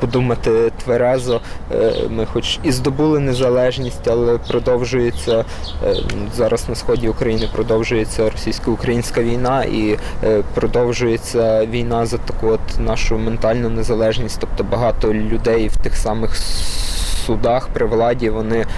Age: 20-39